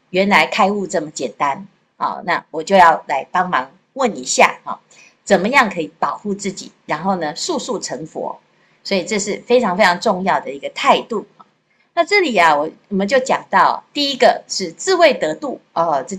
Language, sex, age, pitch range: Chinese, female, 50-69, 165-240 Hz